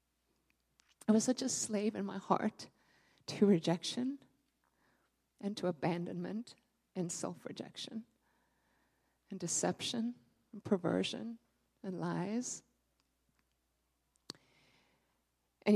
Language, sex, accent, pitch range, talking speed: English, female, American, 170-215 Hz, 85 wpm